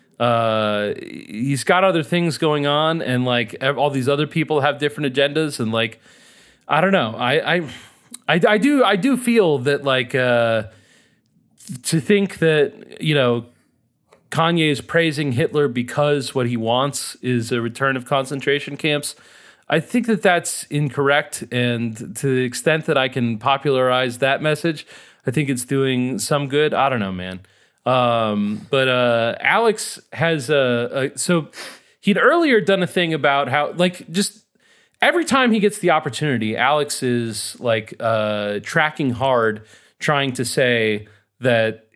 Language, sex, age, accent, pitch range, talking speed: English, male, 30-49, American, 115-155 Hz, 155 wpm